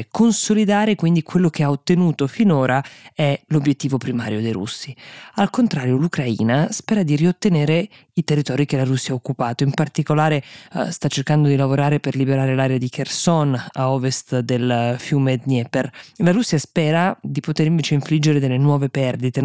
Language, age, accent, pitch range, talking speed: Italian, 20-39, native, 135-160 Hz, 160 wpm